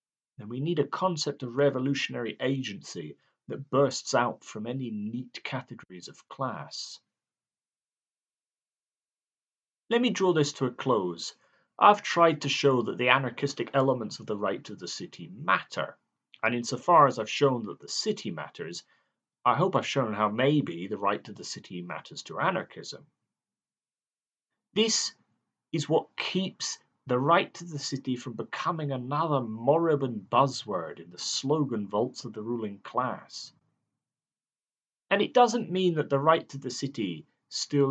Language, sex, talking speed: English, male, 150 wpm